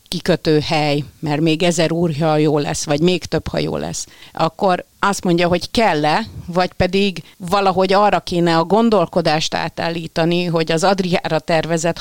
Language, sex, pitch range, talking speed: Hungarian, female, 155-180 Hz, 150 wpm